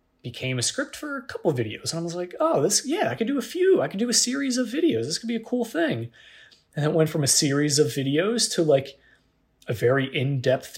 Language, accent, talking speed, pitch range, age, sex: English, American, 255 wpm, 115-150 Hz, 30-49, male